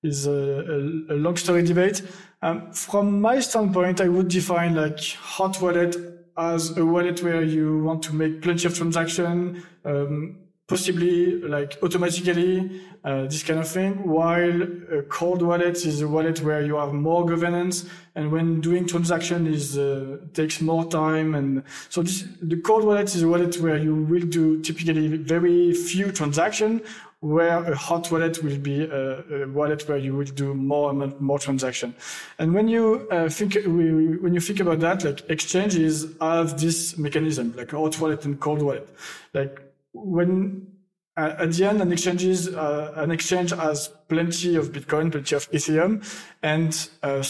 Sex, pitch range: male, 155-180 Hz